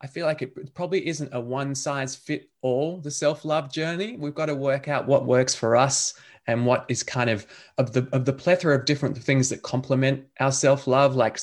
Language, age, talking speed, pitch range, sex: English, 20-39, 215 wpm, 125-155 Hz, male